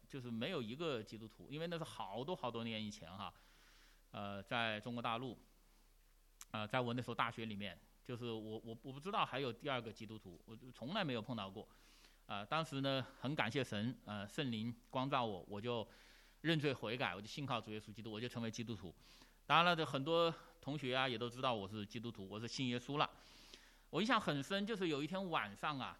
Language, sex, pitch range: English, male, 115-170 Hz